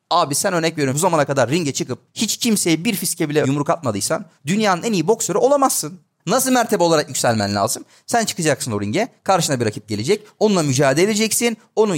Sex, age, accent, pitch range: male, 30-49, native, 145-220 Hz